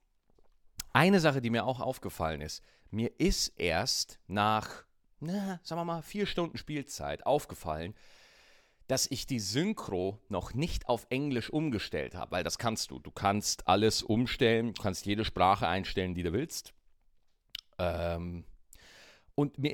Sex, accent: male, German